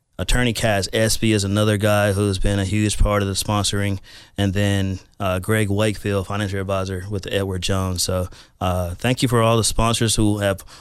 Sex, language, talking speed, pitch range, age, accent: male, English, 195 wpm, 90-110 Hz, 30-49, American